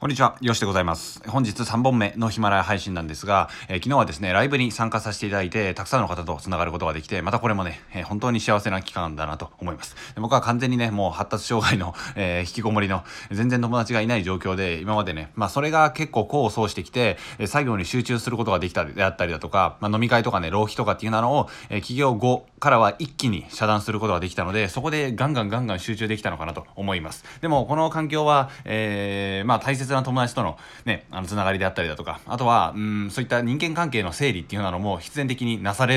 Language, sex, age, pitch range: Japanese, male, 20-39, 95-120 Hz